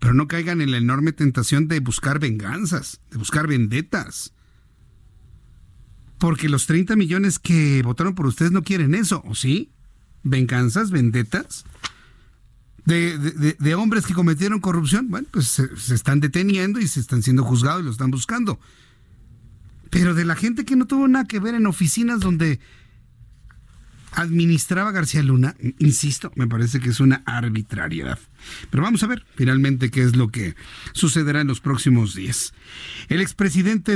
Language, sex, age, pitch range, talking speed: Spanish, male, 50-69, 125-175 Hz, 155 wpm